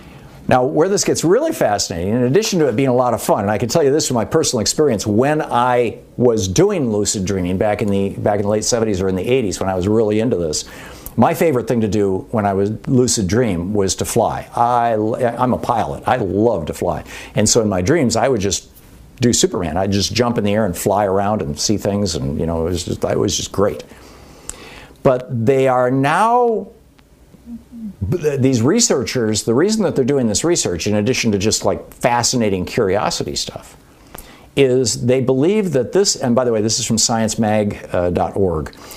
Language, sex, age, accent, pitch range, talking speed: English, male, 50-69, American, 105-130 Hz, 210 wpm